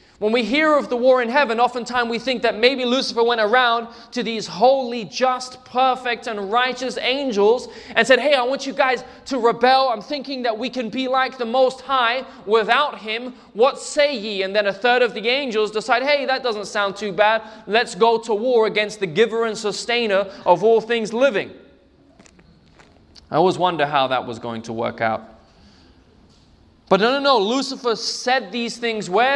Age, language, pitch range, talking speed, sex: 20-39, English, 220-260 Hz, 190 wpm, male